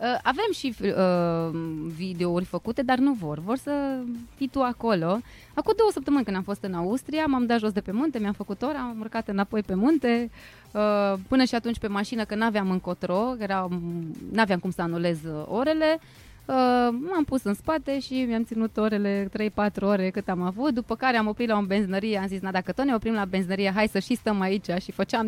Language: Romanian